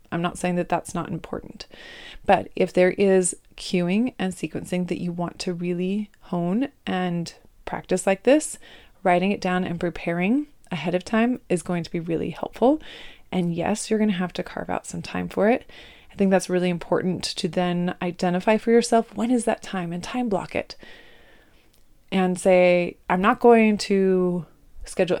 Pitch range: 180-220 Hz